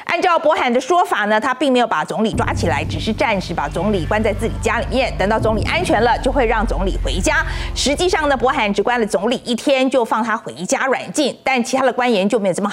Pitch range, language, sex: 225-315 Hz, Chinese, female